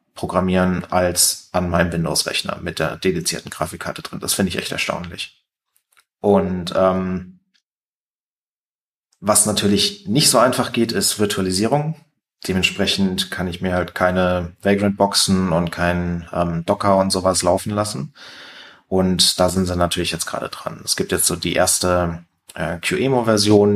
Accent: German